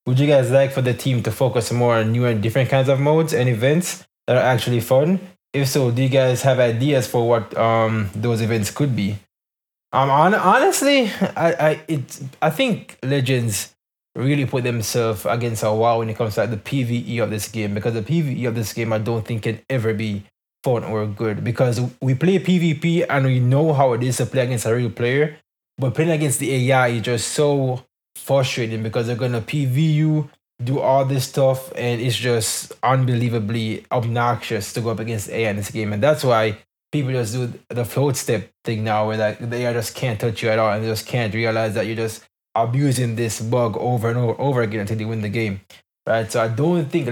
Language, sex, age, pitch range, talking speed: English, male, 20-39, 115-135 Hz, 215 wpm